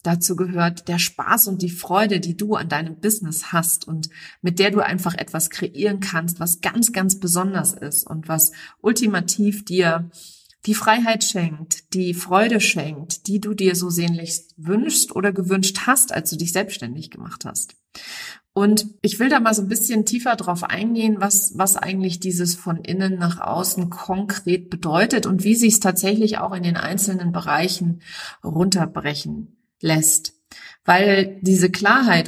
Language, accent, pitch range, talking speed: German, German, 170-210 Hz, 160 wpm